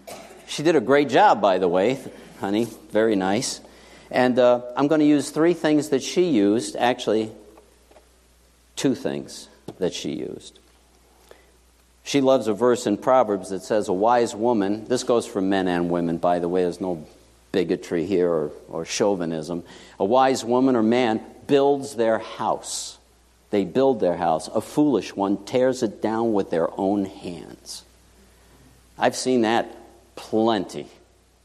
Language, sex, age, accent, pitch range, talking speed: English, male, 50-69, American, 95-125 Hz, 155 wpm